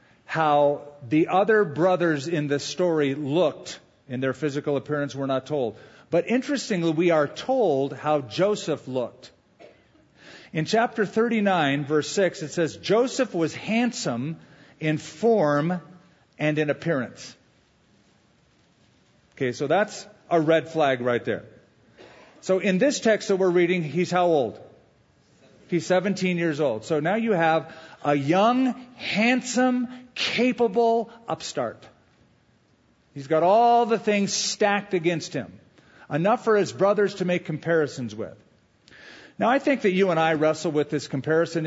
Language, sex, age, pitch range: English, male, 50-69, 145-190 Hz